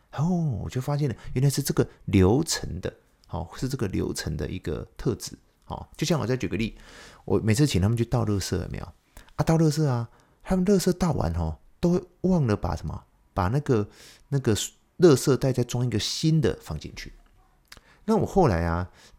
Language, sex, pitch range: Chinese, male, 85-125 Hz